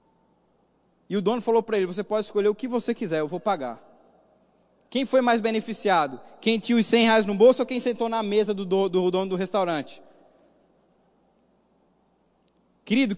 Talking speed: 175 wpm